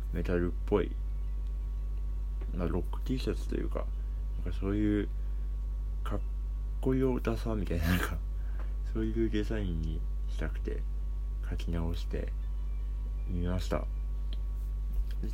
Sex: male